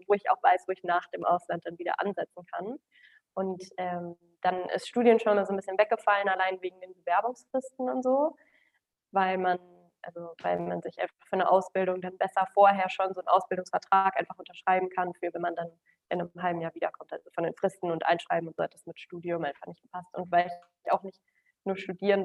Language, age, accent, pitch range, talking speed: German, 20-39, German, 175-215 Hz, 215 wpm